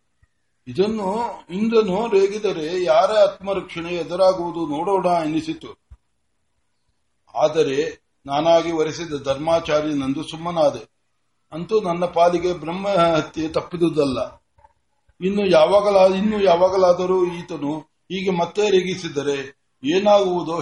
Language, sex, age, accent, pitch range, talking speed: Kannada, male, 60-79, native, 155-190 Hz, 85 wpm